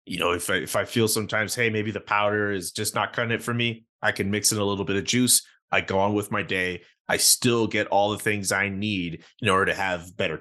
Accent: American